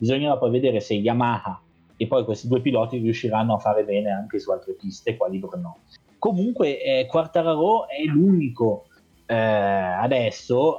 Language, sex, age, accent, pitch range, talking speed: Italian, male, 30-49, native, 105-135 Hz, 150 wpm